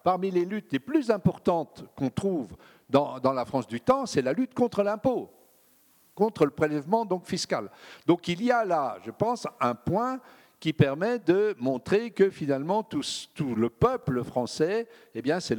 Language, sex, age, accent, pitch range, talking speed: French, male, 50-69, French, 130-205 Hz, 170 wpm